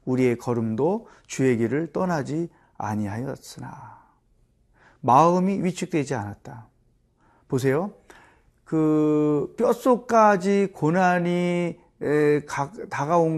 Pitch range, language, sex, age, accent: 125-185 Hz, Korean, male, 40-59, native